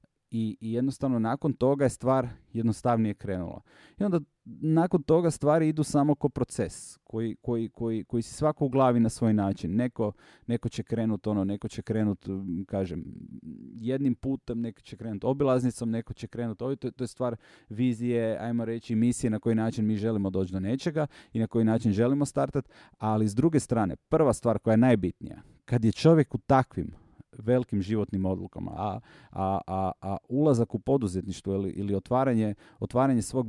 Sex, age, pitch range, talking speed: male, 30-49, 105-130 Hz, 175 wpm